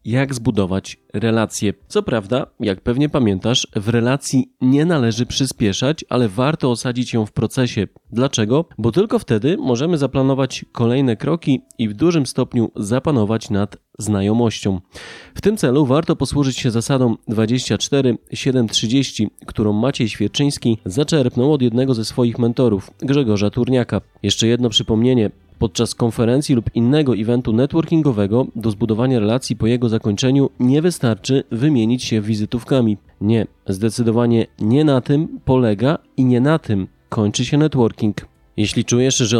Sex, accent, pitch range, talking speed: male, native, 110-135 Hz, 135 wpm